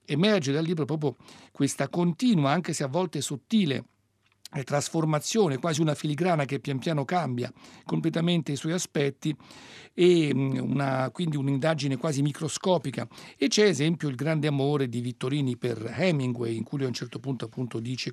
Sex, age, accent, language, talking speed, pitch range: male, 60-79, native, Italian, 160 wpm, 130-165 Hz